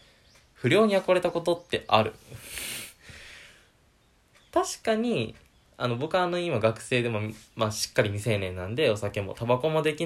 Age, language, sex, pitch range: 20-39, Japanese, male, 110-165 Hz